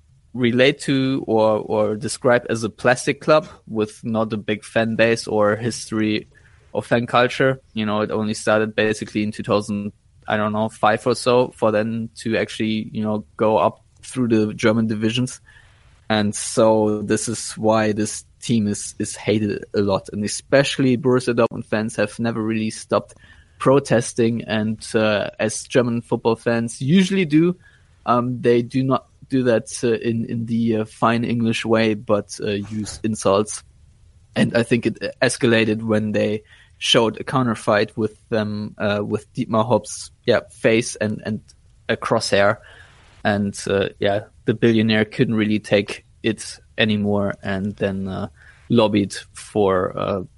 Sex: male